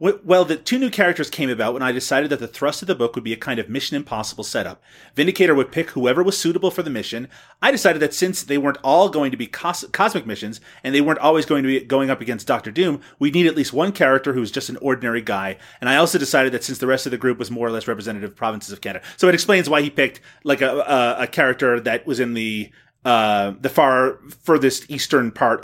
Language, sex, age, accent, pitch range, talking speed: English, male, 30-49, American, 120-165 Hz, 260 wpm